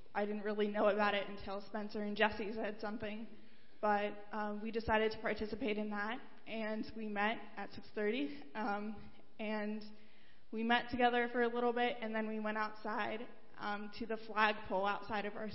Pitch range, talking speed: 205-225 Hz, 180 wpm